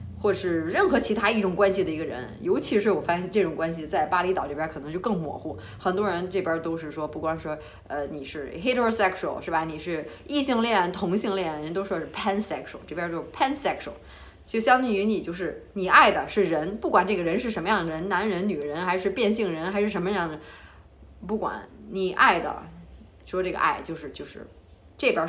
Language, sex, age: Chinese, female, 20-39